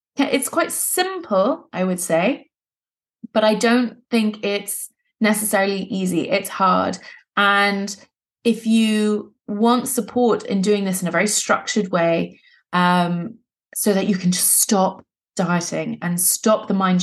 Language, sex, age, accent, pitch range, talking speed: English, female, 20-39, British, 180-215 Hz, 145 wpm